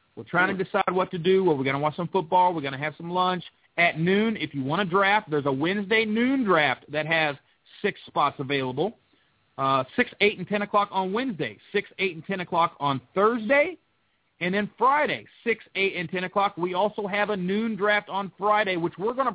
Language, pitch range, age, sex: English, 160-210 Hz, 40-59, male